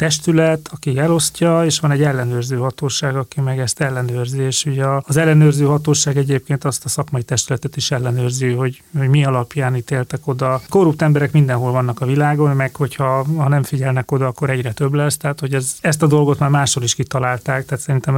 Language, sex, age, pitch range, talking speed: Hungarian, male, 30-49, 130-150 Hz, 195 wpm